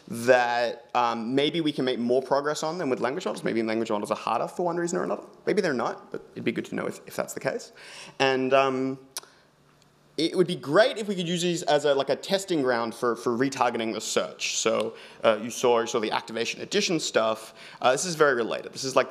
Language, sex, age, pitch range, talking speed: English, male, 30-49, 120-170 Hz, 240 wpm